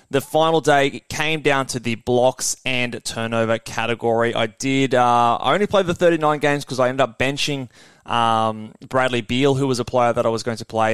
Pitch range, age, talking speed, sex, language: 115-145 Hz, 20-39, 210 wpm, male, English